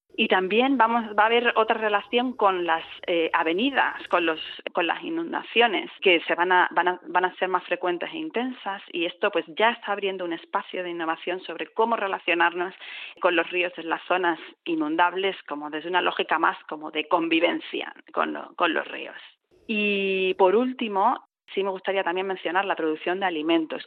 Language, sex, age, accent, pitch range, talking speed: Spanish, female, 30-49, Spanish, 170-200 Hz, 190 wpm